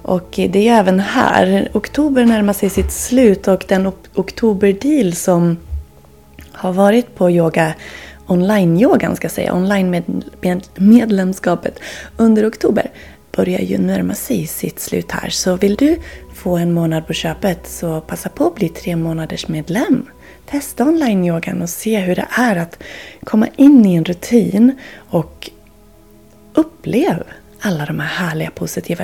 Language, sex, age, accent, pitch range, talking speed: Swedish, female, 30-49, native, 160-225 Hz, 140 wpm